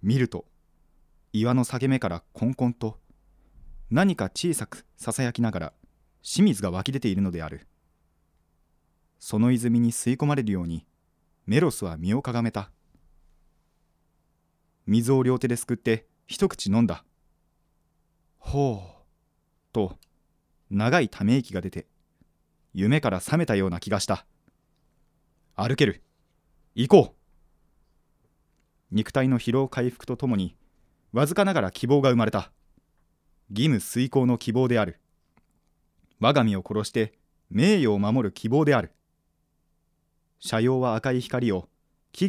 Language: Japanese